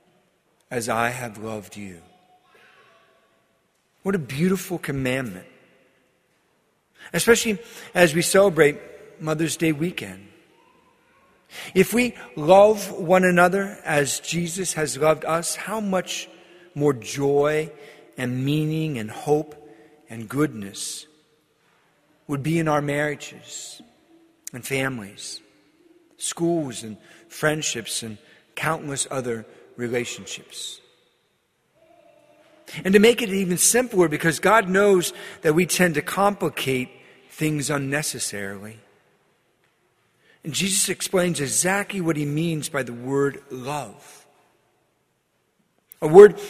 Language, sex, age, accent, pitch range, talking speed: English, male, 50-69, American, 140-185 Hz, 100 wpm